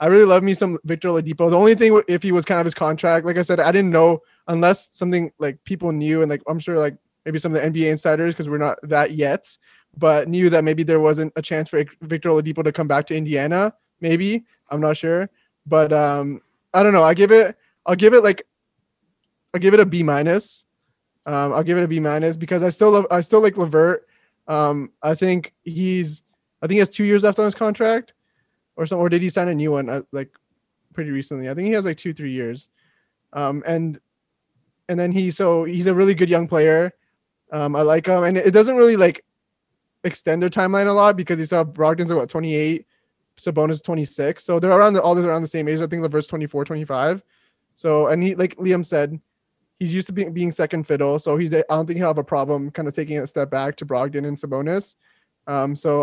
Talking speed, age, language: 235 wpm, 20-39, English